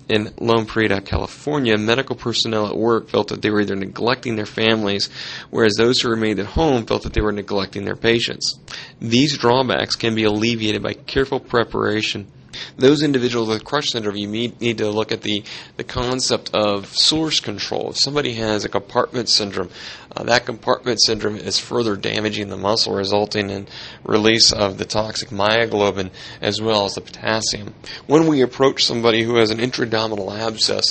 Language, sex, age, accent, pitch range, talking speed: English, male, 30-49, American, 105-120 Hz, 175 wpm